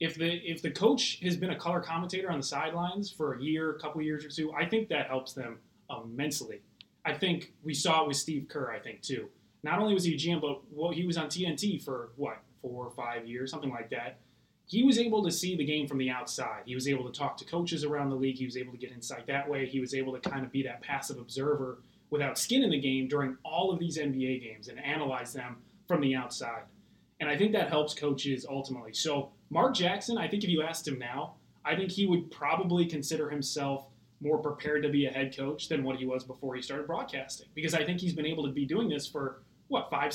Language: English